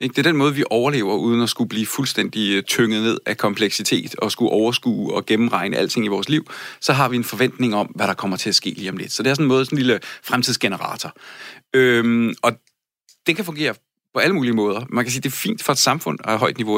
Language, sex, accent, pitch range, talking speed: Danish, male, native, 110-135 Hz, 255 wpm